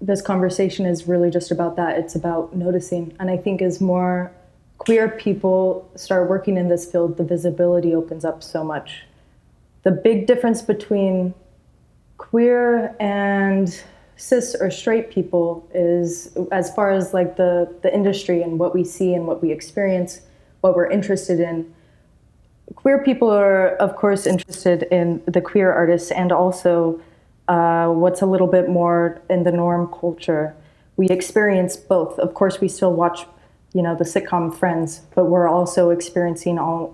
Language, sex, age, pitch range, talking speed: English, female, 20-39, 175-195 Hz, 160 wpm